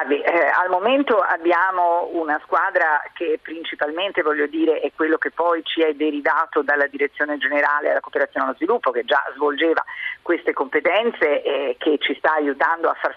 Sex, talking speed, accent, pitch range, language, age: female, 170 wpm, native, 150-200 Hz, Italian, 50-69